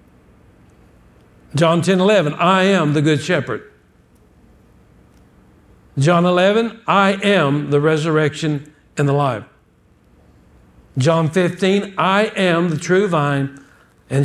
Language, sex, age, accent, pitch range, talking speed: English, male, 60-79, American, 145-195 Hz, 105 wpm